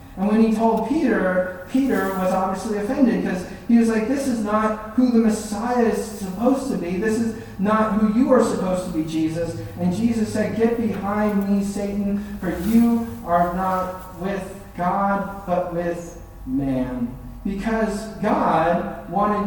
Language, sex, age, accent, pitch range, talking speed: English, male, 40-59, American, 170-220 Hz, 160 wpm